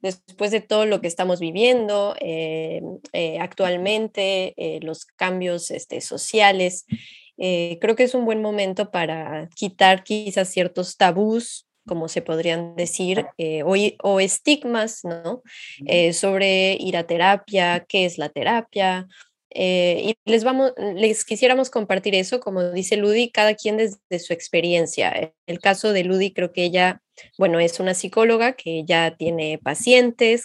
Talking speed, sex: 150 wpm, female